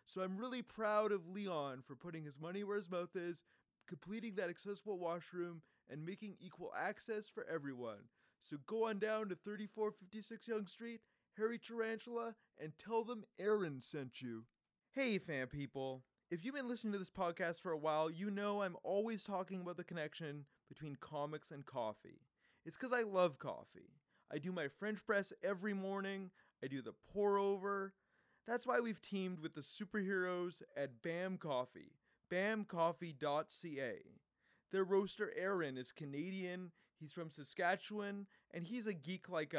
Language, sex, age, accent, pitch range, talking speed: English, male, 30-49, American, 155-210 Hz, 160 wpm